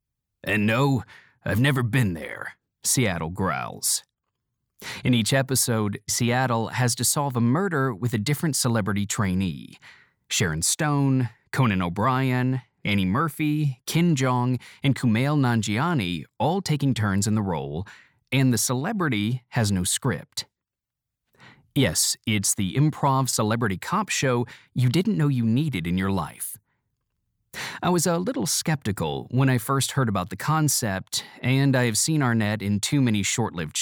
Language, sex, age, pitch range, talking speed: English, male, 30-49, 105-135 Hz, 145 wpm